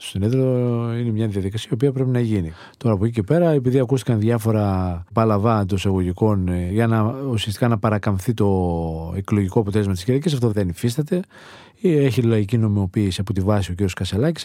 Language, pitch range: Greek, 100-135 Hz